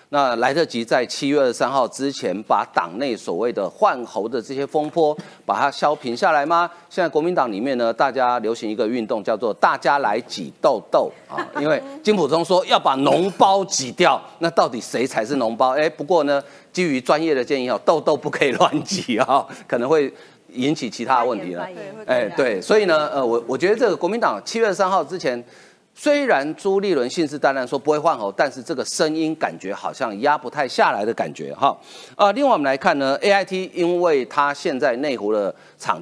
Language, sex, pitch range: Chinese, male, 135-195 Hz